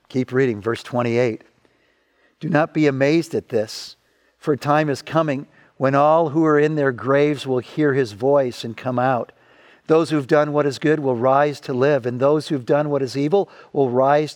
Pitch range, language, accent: 135-175 Hz, English, American